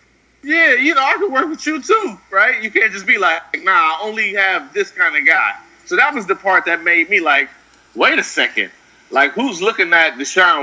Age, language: 30-49, English